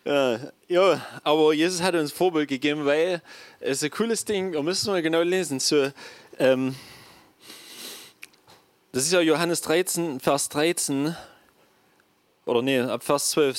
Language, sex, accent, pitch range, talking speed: German, male, German, 135-180 Hz, 150 wpm